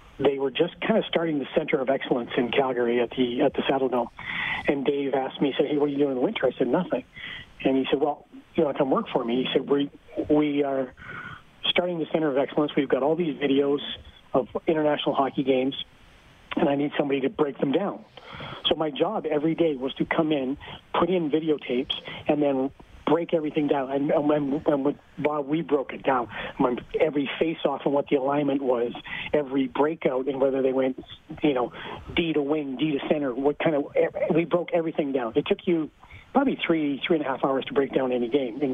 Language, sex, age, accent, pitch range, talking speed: English, male, 40-59, American, 135-160 Hz, 225 wpm